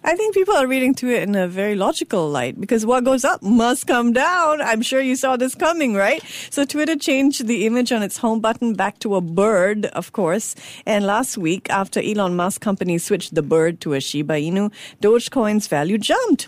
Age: 50-69